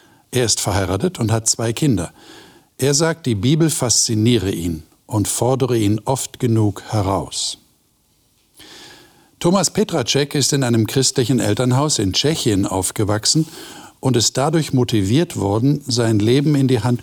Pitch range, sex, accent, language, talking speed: 105-135 Hz, male, German, German, 135 wpm